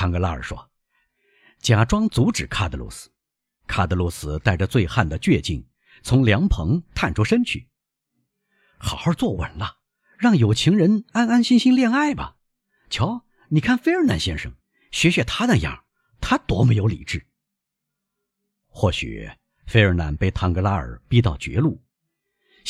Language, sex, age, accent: Chinese, male, 50-69, native